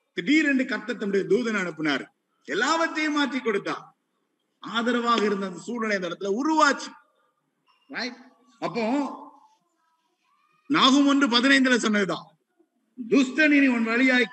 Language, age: Tamil, 50-69